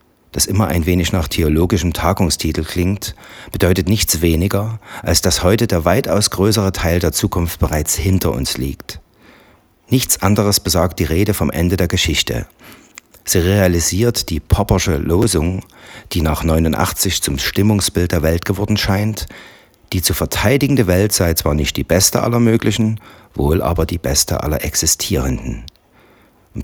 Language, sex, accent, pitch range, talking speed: German, male, German, 80-105 Hz, 145 wpm